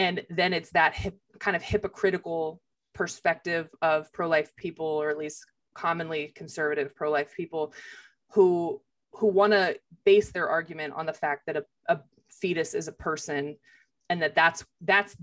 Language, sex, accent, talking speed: English, female, American, 160 wpm